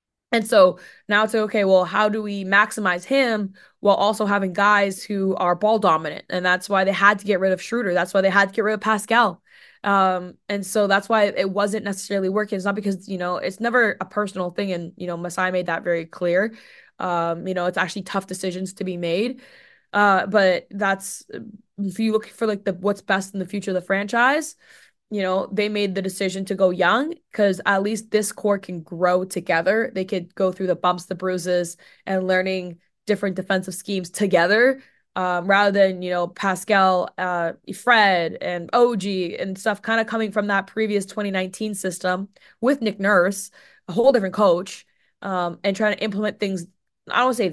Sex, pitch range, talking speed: female, 185-215 Hz, 200 wpm